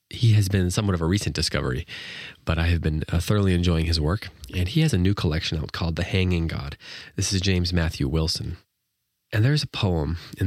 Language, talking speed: English, 225 wpm